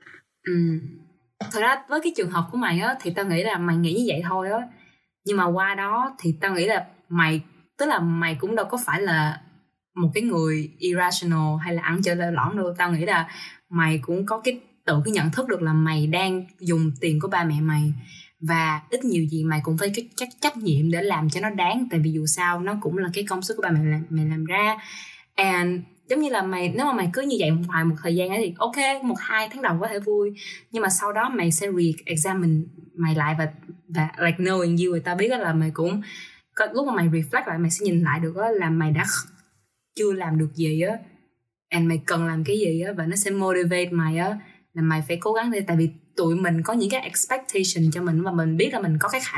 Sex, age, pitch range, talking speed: female, 20-39, 160-200 Hz, 245 wpm